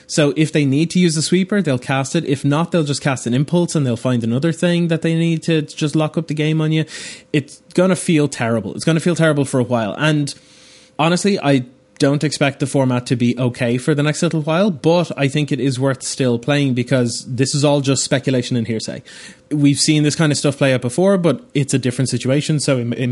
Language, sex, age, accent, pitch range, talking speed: English, male, 20-39, Irish, 125-155 Hz, 245 wpm